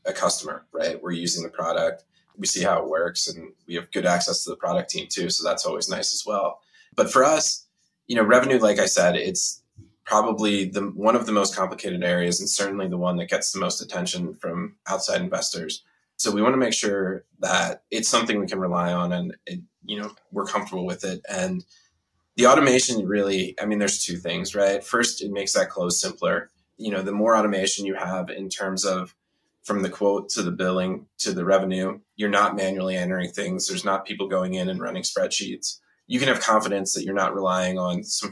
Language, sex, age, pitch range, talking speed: English, male, 20-39, 95-110 Hz, 215 wpm